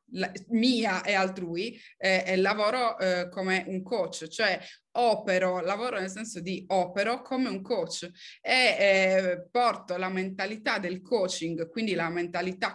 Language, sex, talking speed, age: Italian, female, 135 wpm, 20-39